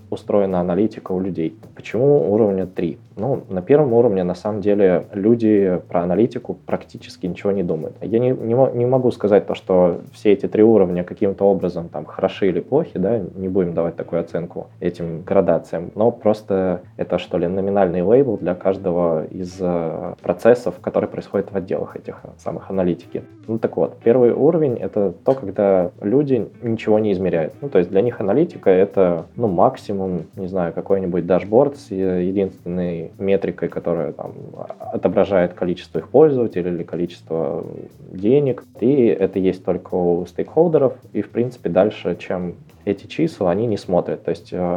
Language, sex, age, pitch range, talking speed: Russian, male, 20-39, 90-110 Hz, 165 wpm